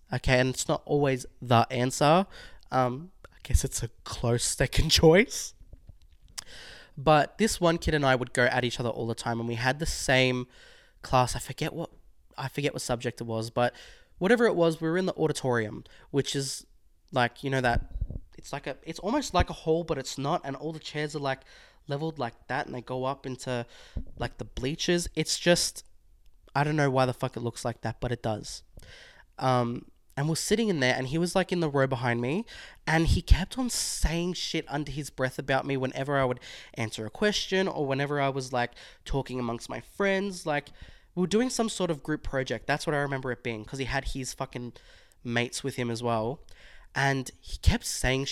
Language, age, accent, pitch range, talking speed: English, 20-39, Australian, 120-155 Hz, 215 wpm